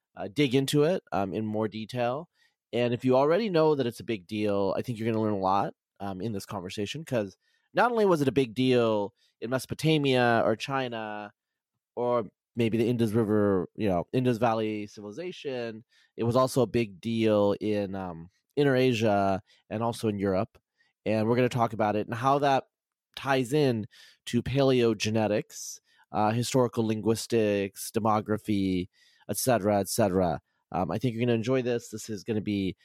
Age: 30-49